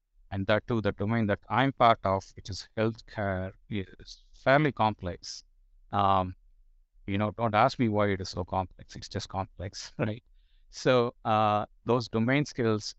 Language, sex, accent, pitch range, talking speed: English, male, Indian, 95-110 Hz, 160 wpm